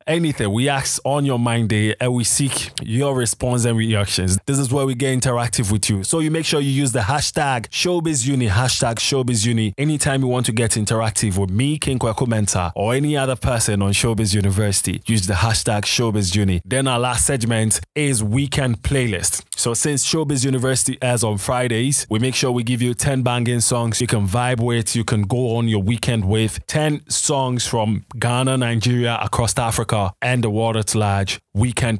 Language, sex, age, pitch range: English, male, 20-39, 110-135 Hz